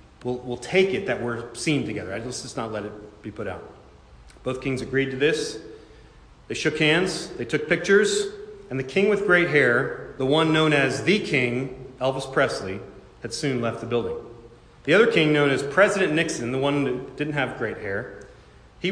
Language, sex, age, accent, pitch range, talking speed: English, male, 30-49, American, 115-155 Hz, 195 wpm